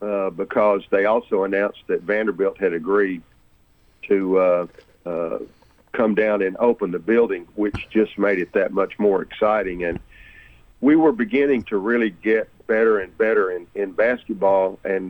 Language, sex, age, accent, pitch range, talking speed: English, male, 50-69, American, 95-120 Hz, 160 wpm